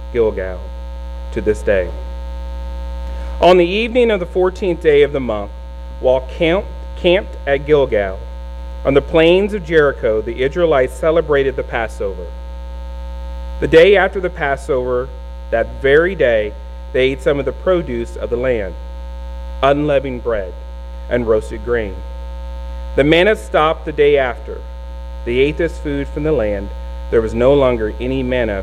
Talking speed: 145 wpm